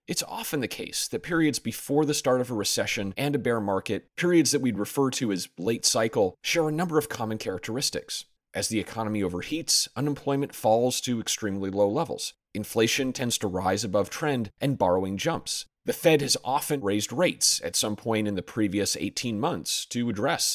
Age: 30-49